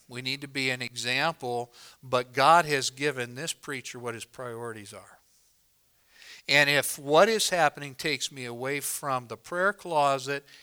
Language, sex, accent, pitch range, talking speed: English, male, American, 125-155 Hz, 160 wpm